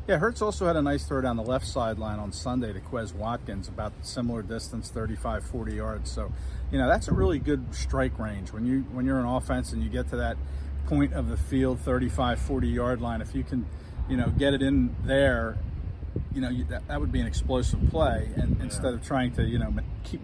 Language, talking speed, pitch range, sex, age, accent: English, 225 wpm, 85-130 Hz, male, 40-59, American